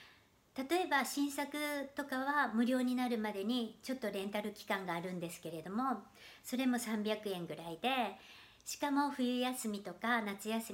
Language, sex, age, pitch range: Japanese, male, 60-79, 200-260 Hz